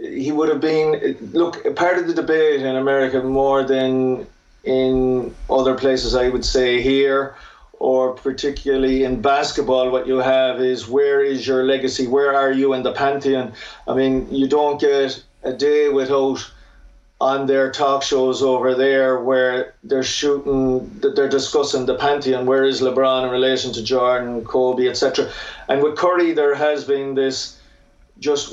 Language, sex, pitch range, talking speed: English, male, 130-145 Hz, 160 wpm